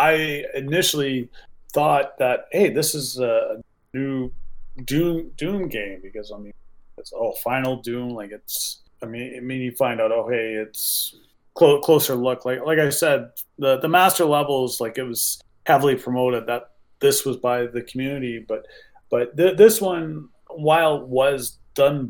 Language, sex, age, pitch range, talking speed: English, male, 30-49, 115-145 Hz, 160 wpm